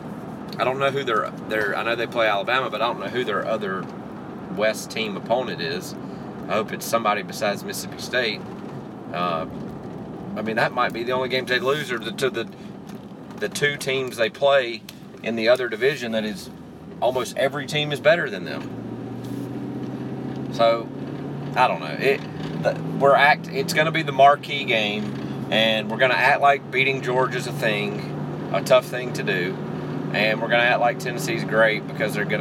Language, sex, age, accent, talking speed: English, male, 30-49, American, 195 wpm